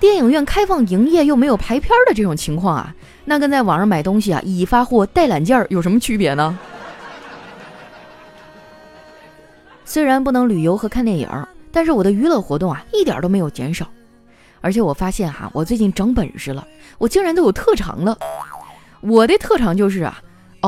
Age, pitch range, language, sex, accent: 20-39, 165-260 Hz, Chinese, female, native